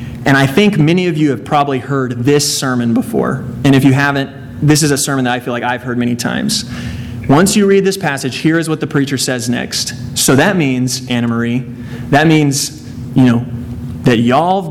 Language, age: English, 30-49